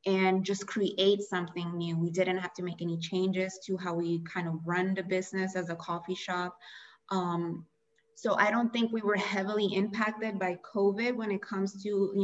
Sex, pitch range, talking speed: female, 175-200 Hz, 190 wpm